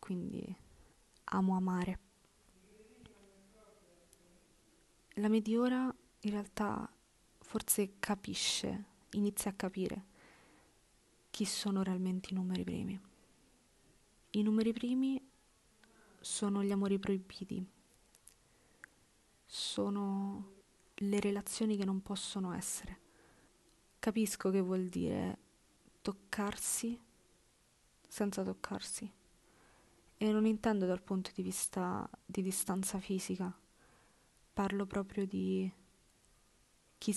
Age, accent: 20-39, native